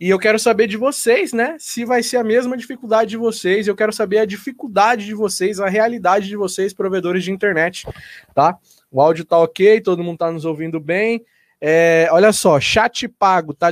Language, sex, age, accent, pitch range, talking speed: Portuguese, male, 20-39, Brazilian, 155-215 Hz, 195 wpm